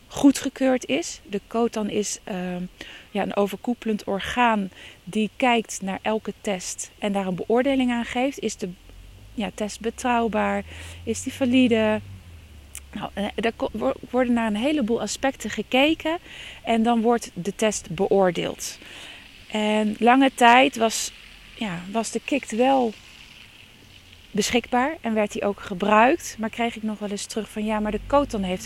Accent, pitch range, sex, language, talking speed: Dutch, 180-250 Hz, female, Dutch, 140 wpm